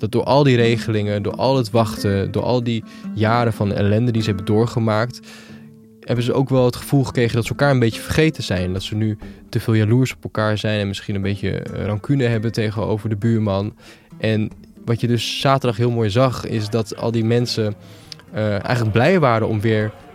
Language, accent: Dutch, Dutch